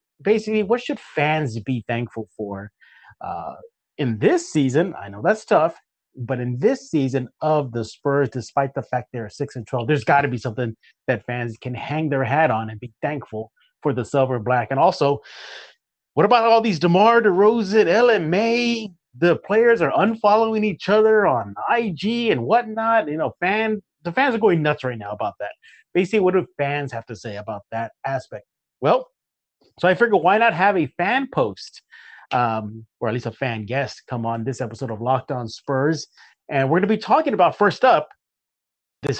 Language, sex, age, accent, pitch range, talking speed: English, male, 30-49, American, 125-185 Hz, 190 wpm